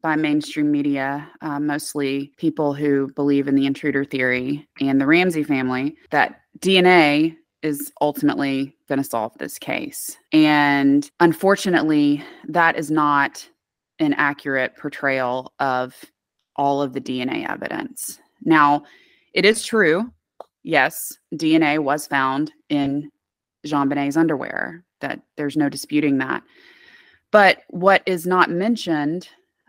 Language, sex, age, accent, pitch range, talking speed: English, female, 20-39, American, 145-170 Hz, 125 wpm